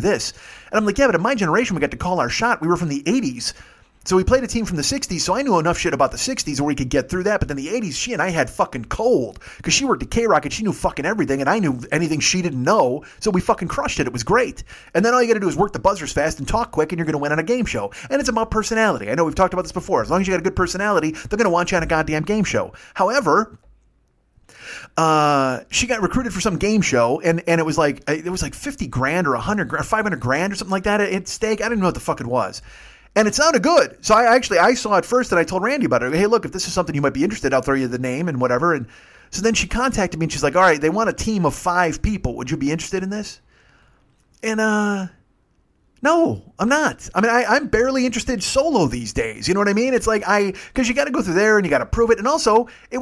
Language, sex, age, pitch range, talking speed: English, male, 30-49, 155-225 Hz, 305 wpm